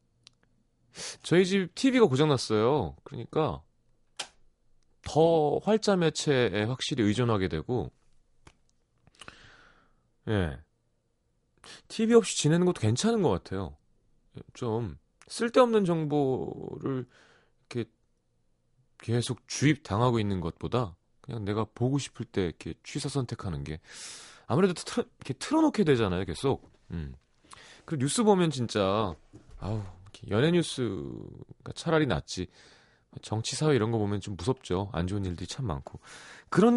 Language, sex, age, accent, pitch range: Korean, male, 30-49, native, 105-155 Hz